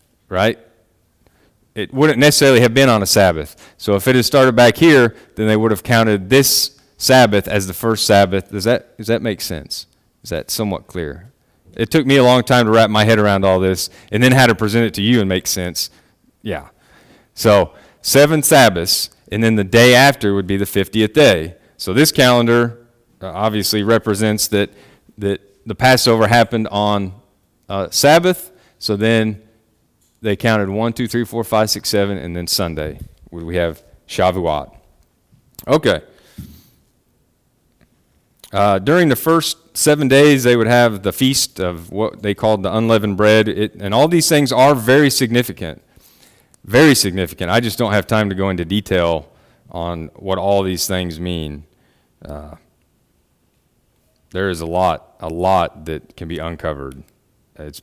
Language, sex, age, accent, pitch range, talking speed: English, male, 30-49, American, 95-120 Hz, 170 wpm